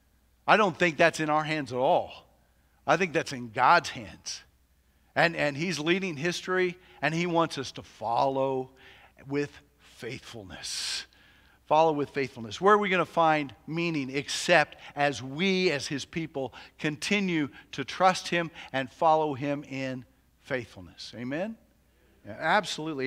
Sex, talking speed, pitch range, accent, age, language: male, 145 wpm, 130-180 Hz, American, 50-69, English